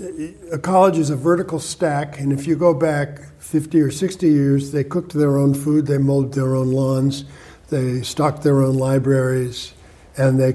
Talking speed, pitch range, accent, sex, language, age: 180 wpm, 135-160 Hz, American, male, English, 60-79